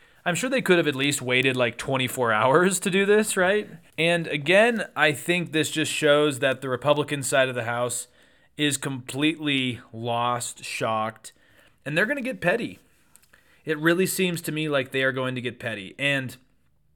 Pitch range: 125-155 Hz